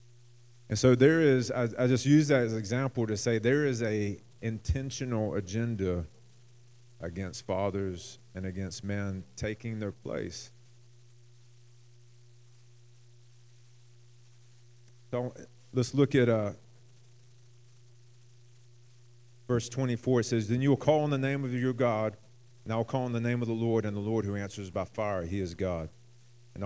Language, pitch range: English, 110-120 Hz